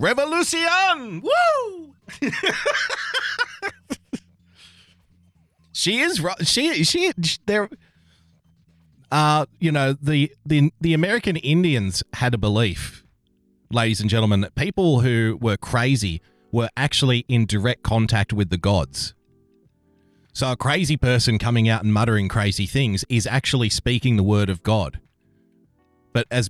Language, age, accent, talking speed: English, 30-49, Australian, 120 wpm